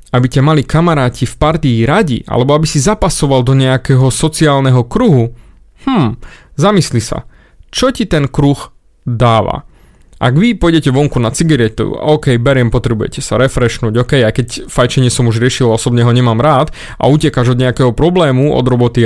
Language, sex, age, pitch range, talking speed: Slovak, male, 30-49, 120-160 Hz, 165 wpm